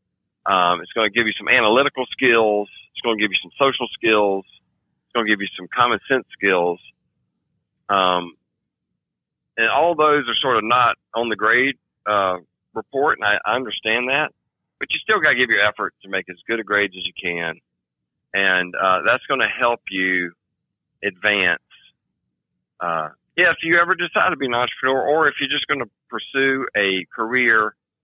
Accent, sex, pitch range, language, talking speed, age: American, male, 95-120 Hz, English, 190 wpm, 40-59